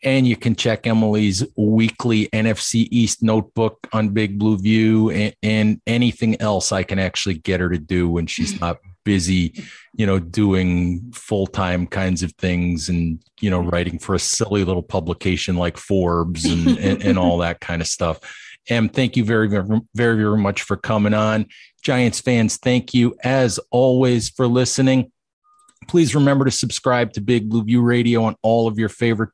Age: 40-59